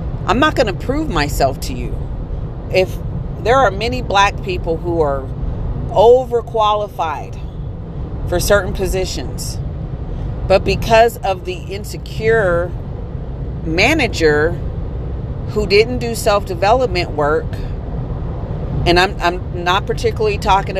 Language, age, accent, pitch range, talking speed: English, 40-59, American, 140-195 Hz, 105 wpm